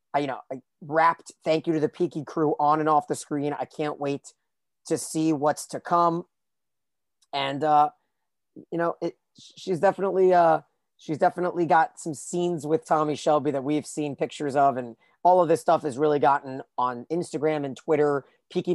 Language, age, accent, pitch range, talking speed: English, 30-49, American, 140-165 Hz, 180 wpm